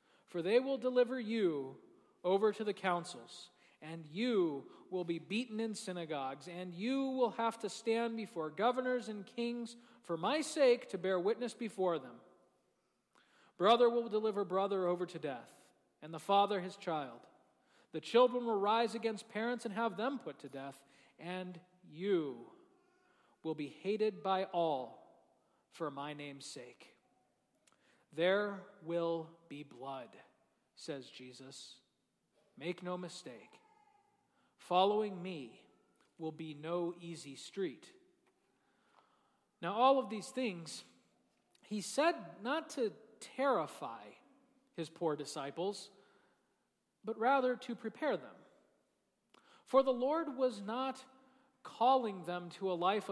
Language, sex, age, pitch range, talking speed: English, male, 40-59, 170-245 Hz, 130 wpm